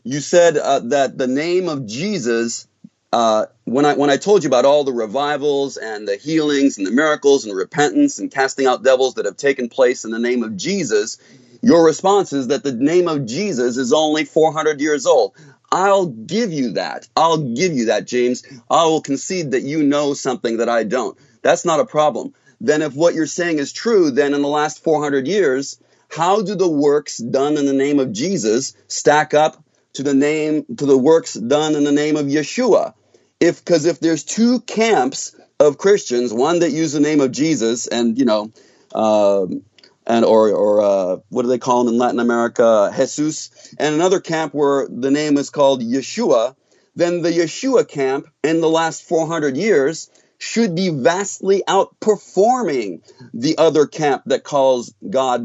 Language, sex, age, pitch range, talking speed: English, male, 30-49, 130-160 Hz, 185 wpm